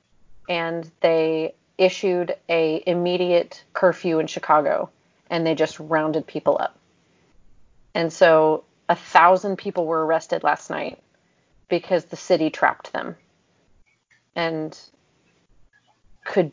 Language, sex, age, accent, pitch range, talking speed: English, female, 30-49, American, 165-185 Hz, 110 wpm